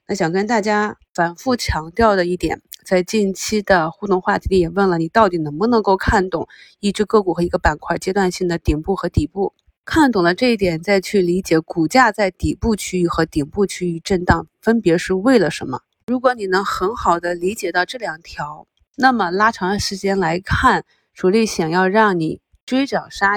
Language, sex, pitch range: Chinese, female, 170-205 Hz